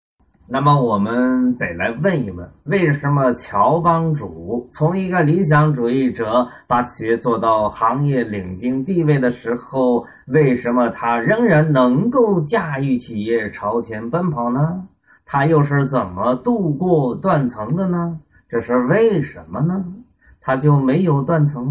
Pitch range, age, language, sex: 115-160 Hz, 20-39, Chinese, male